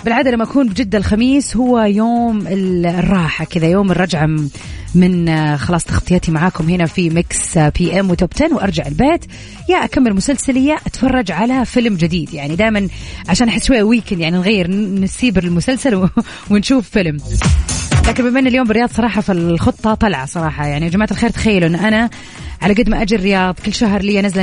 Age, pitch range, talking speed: 30-49, 175-230 Hz, 160 wpm